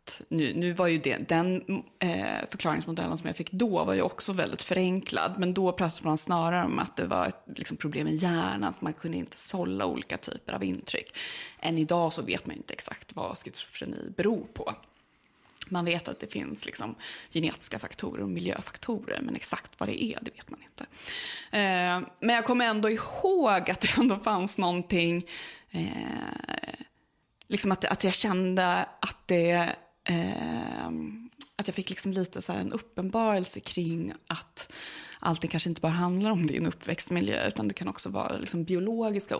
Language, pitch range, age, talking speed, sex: English, 170-215 Hz, 20-39, 160 wpm, female